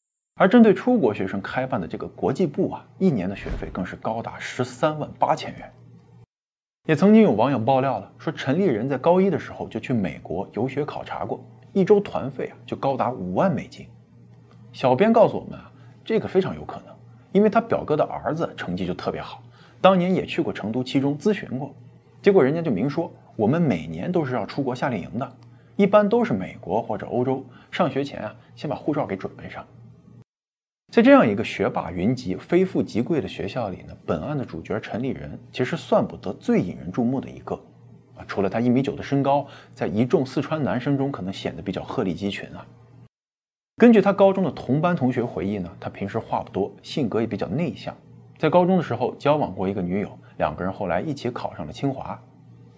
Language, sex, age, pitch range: Chinese, male, 20-39, 120-190 Hz